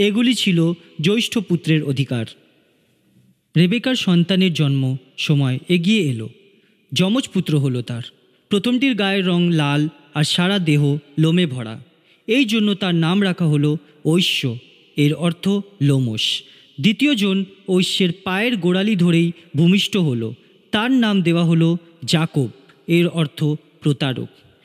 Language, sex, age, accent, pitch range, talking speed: Bengali, male, 30-49, native, 145-205 Hz, 120 wpm